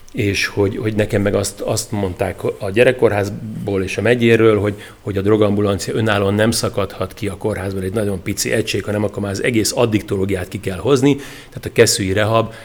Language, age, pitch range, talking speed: Hungarian, 40-59, 95-115 Hz, 190 wpm